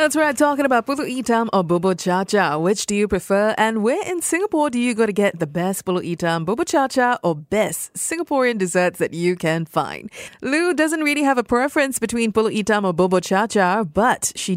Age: 30-49